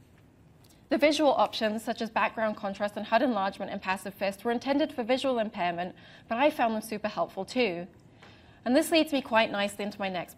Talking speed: 195 wpm